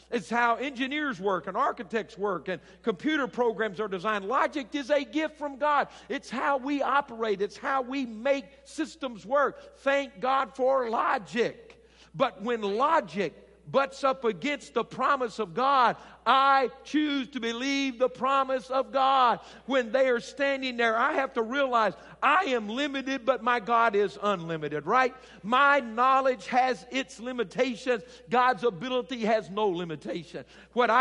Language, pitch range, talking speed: English, 220-270 Hz, 155 wpm